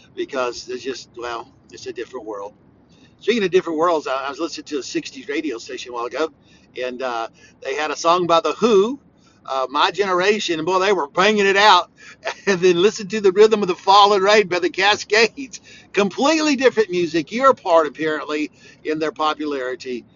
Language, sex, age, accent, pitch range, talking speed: English, male, 60-79, American, 135-200 Hz, 190 wpm